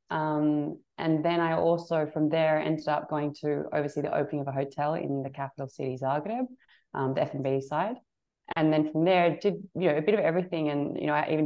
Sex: female